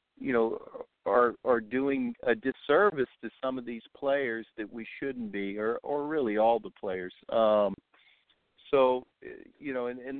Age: 50-69